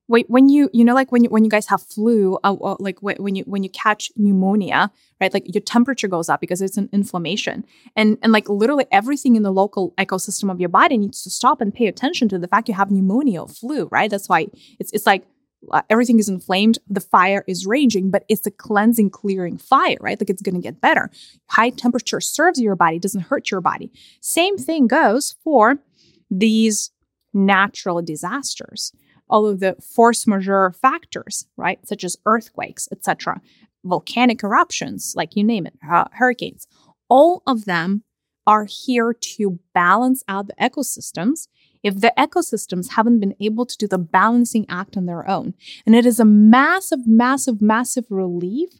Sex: female